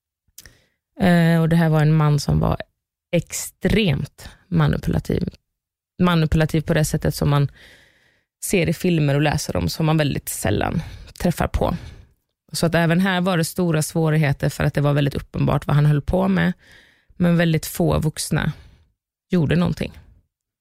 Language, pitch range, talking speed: Swedish, 150-190 Hz, 155 wpm